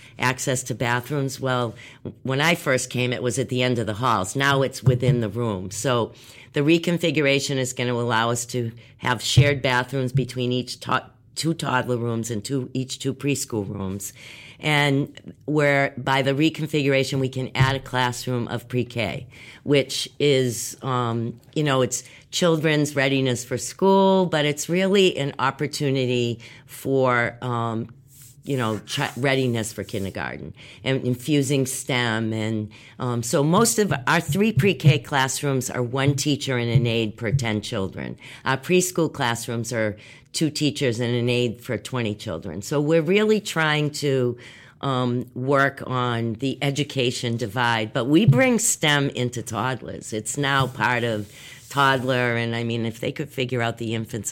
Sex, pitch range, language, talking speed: female, 120-140 Hz, English, 160 wpm